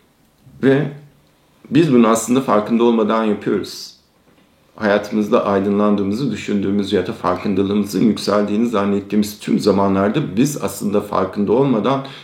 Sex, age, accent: male, 50-69, native